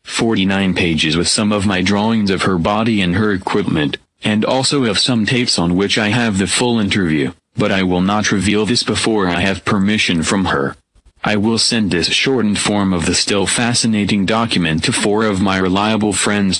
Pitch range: 95-115 Hz